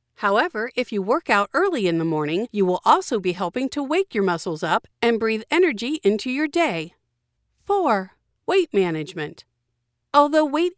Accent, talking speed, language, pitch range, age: American, 165 wpm, English, 195-315 Hz, 50-69